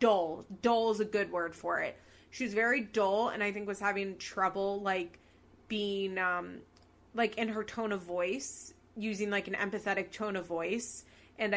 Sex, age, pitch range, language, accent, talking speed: female, 20-39, 195-235 Hz, English, American, 180 wpm